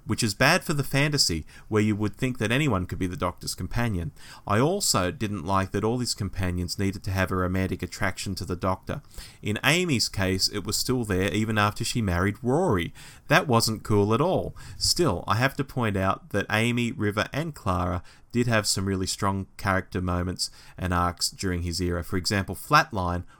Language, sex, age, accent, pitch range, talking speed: English, male, 30-49, Australian, 95-120 Hz, 195 wpm